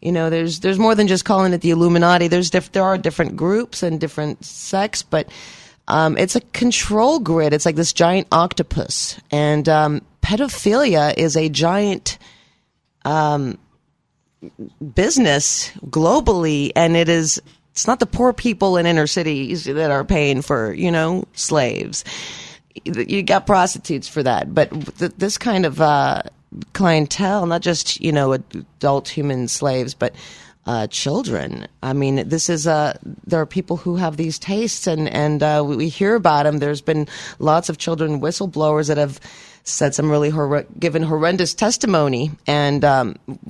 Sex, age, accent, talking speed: female, 30-49, American, 160 wpm